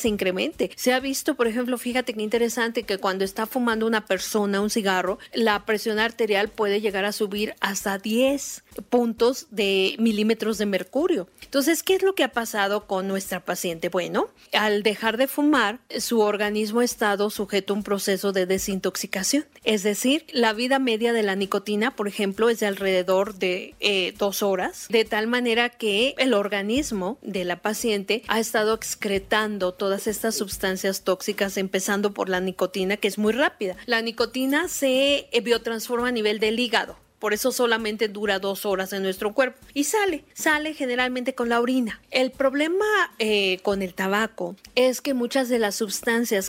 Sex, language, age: female, Spanish, 40-59